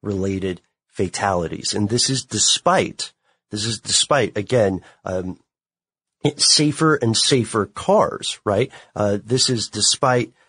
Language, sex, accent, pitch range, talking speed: English, male, American, 100-125 Hz, 115 wpm